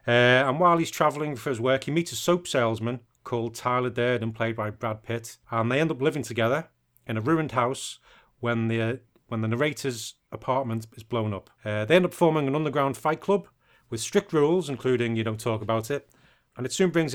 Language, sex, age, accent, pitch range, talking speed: English, male, 30-49, British, 115-140 Hz, 215 wpm